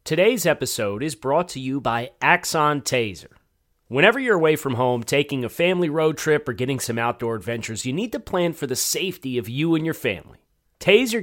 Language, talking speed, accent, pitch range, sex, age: English, 200 wpm, American, 115-165 Hz, male, 30-49